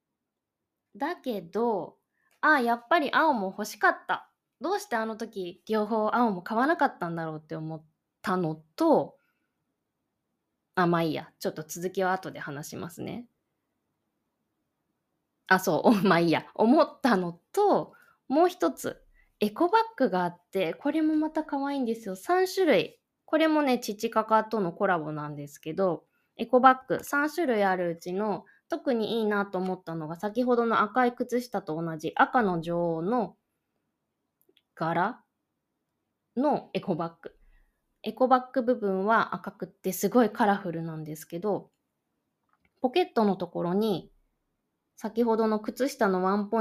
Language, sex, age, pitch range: Japanese, female, 20-39, 175-255 Hz